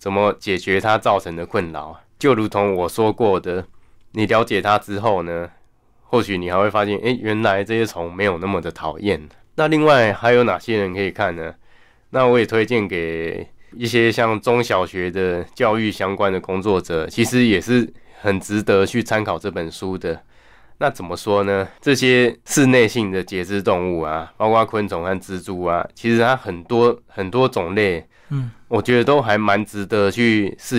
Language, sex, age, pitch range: Chinese, male, 20-39, 95-115 Hz